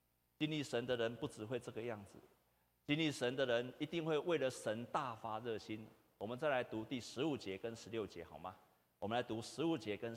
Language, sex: Chinese, male